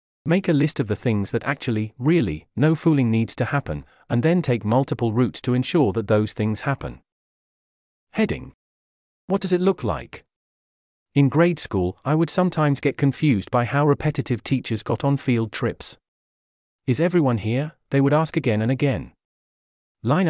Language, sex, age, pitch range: English, male, 40-59, 105-145 Hz